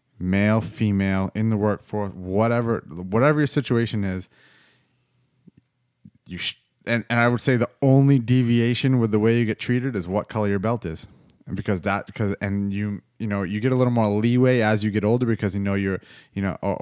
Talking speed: 205 wpm